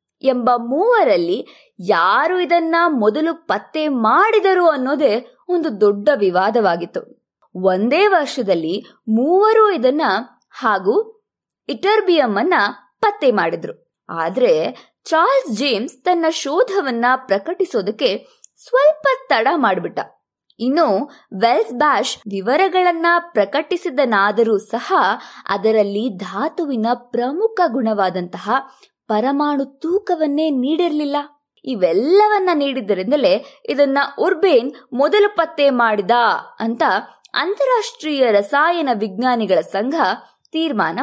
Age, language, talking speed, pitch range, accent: 20-39, Kannada, 80 wpm, 230-355 Hz, native